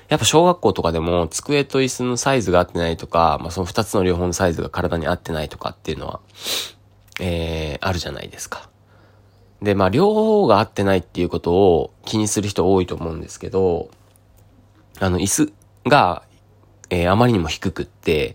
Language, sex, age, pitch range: Japanese, male, 20-39, 90-110 Hz